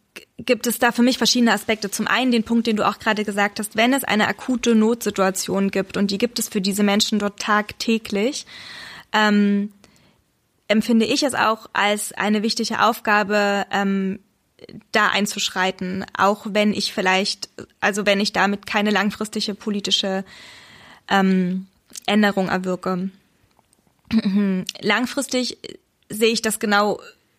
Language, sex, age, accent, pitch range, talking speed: German, female, 10-29, German, 200-225 Hz, 140 wpm